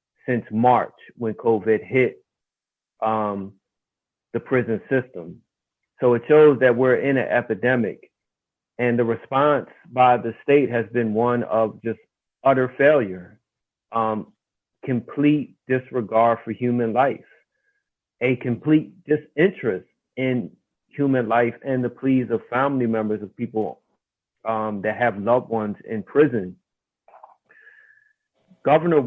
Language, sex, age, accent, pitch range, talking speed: English, male, 40-59, American, 115-135 Hz, 120 wpm